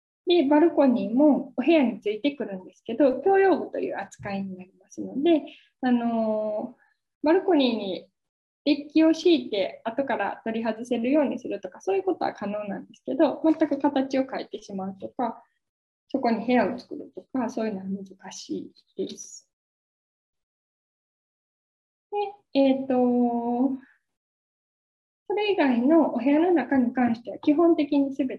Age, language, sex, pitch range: 10-29, Japanese, female, 215-300 Hz